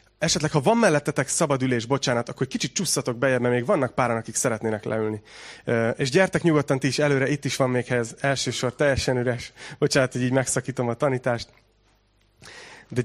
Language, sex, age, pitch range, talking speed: Hungarian, male, 30-49, 120-150 Hz, 180 wpm